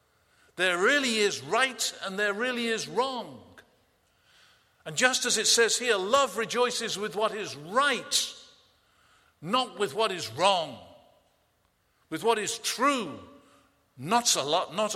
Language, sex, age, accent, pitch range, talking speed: English, male, 50-69, British, 190-240 Hz, 125 wpm